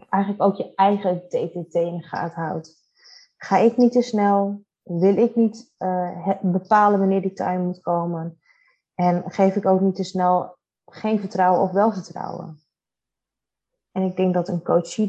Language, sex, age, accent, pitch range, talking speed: Dutch, female, 20-39, Dutch, 180-225 Hz, 165 wpm